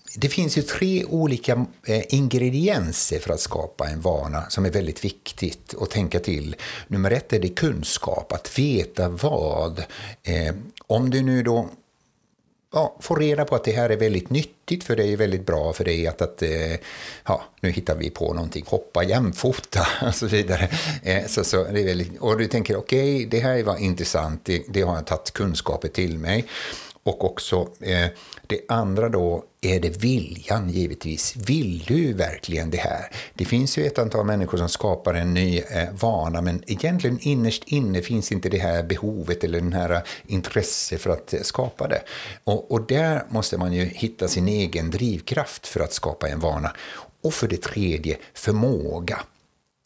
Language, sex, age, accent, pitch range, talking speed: Swedish, male, 60-79, native, 90-120 Hz, 175 wpm